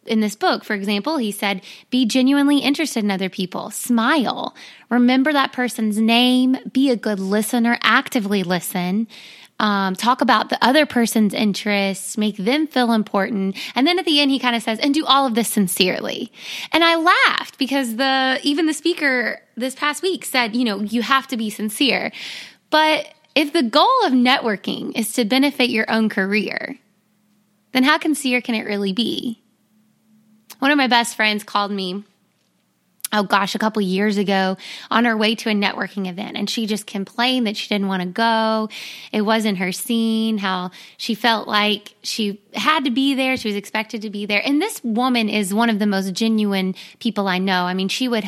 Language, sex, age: English, female, 20-39